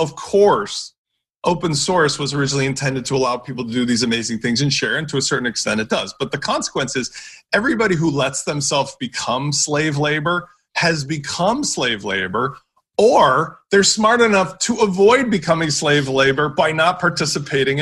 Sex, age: male, 30-49